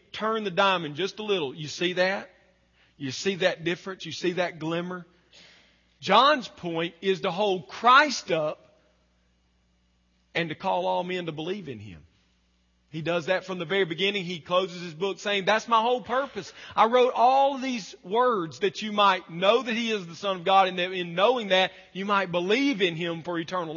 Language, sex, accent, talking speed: English, male, American, 190 wpm